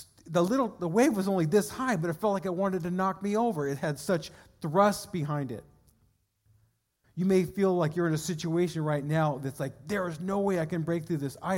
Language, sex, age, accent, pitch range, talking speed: English, male, 50-69, American, 130-175 Hz, 240 wpm